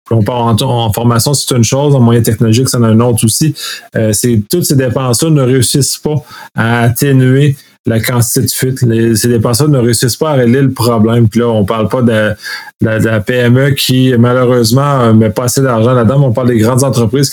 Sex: male